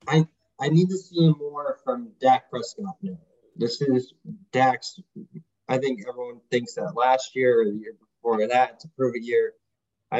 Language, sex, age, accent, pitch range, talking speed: English, male, 20-39, American, 120-175 Hz, 175 wpm